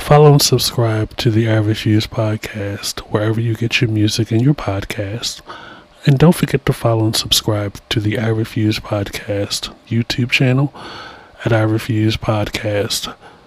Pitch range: 110-120 Hz